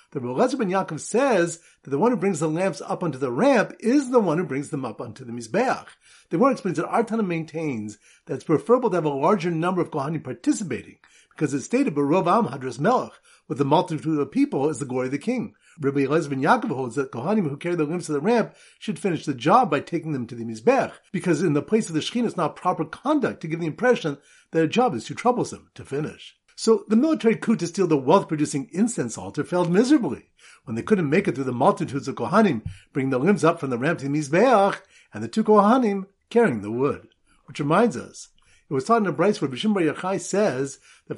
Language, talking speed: English, 235 wpm